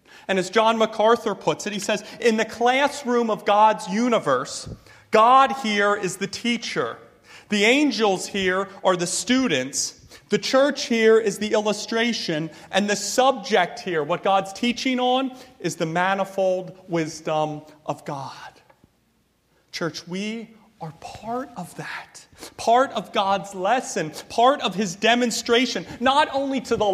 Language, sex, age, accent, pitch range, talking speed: English, male, 30-49, American, 210-270 Hz, 140 wpm